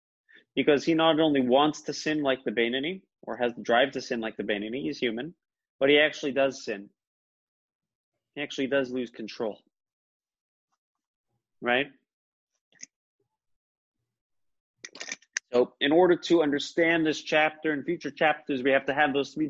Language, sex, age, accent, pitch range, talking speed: English, male, 30-49, American, 130-160 Hz, 150 wpm